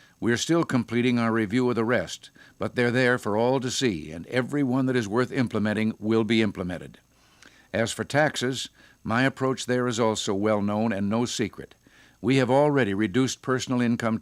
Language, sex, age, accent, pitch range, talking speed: English, male, 60-79, American, 110-130 Hz, 185 wpm